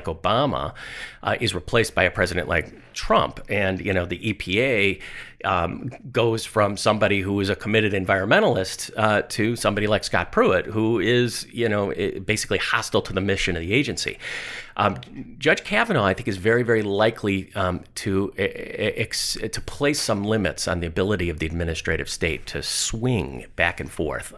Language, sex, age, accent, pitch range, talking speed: English, male, 50-69, American, 90-110 Hz, 170 wpm